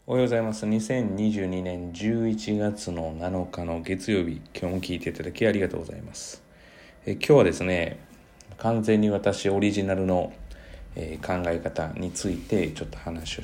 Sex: male